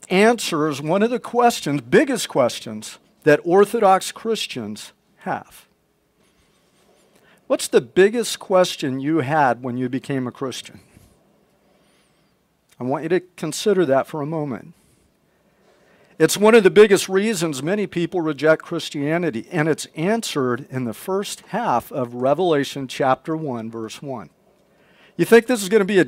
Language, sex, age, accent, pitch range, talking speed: English, male, 50-69, American, 160-205 Hz, 145 wpm